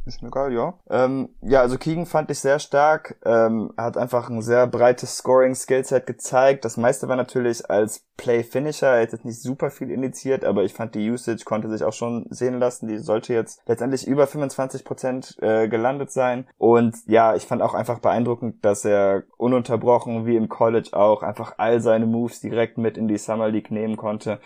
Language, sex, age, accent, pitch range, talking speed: German, male, 20-39, German, 110-130 Hz, 200 wpm